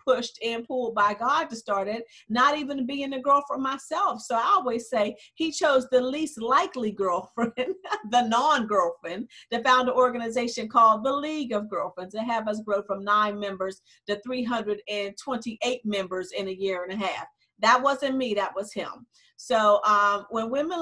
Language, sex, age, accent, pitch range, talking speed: English, female, 40-59, American, 210-260 Hz, 175 wpm